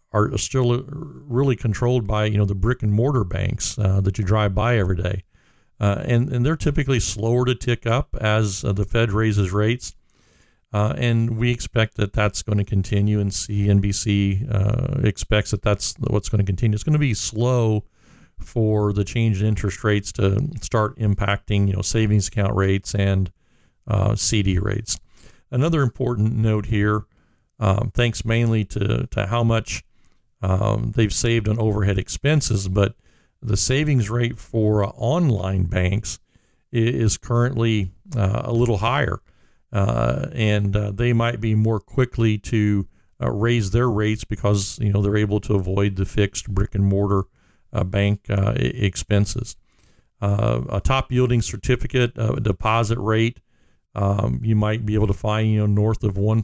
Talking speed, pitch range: 165 wpm, 100-115 Hz